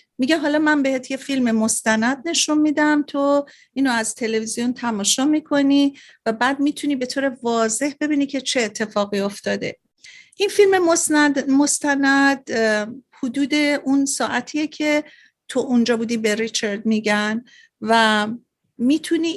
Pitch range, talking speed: 230-290 Hz, 130 wpm